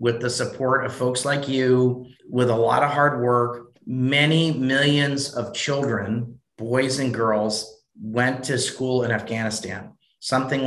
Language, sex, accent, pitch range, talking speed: English, male, American, 125-145 Hz, 145 wpm